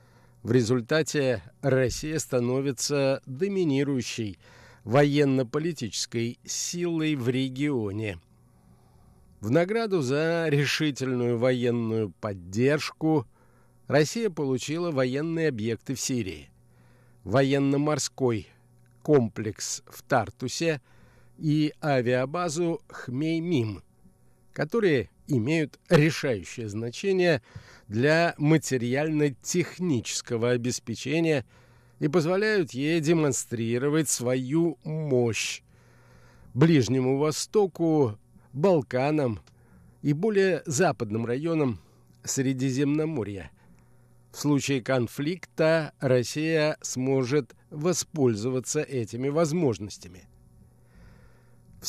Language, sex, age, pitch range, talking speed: Russian, male, 50-69, 120-155 Hz, 65 wpm